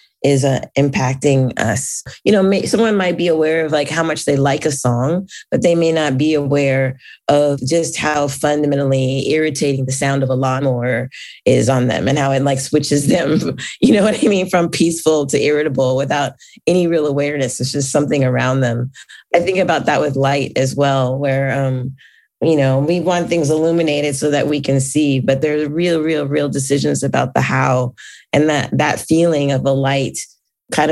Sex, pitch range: female, 135-155 Hz